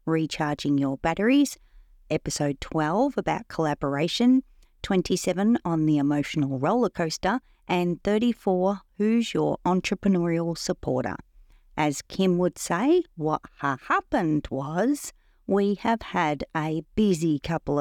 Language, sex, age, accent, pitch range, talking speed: English, female, 40-59, Australian, 155-210 Hz, 110 wpm